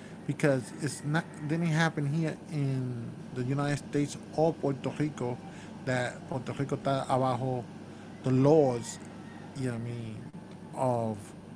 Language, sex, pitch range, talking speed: English, male, 140-185 Hz, 145 wpm